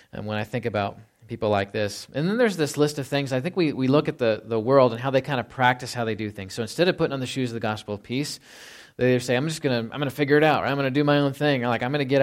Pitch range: 115-135 Hz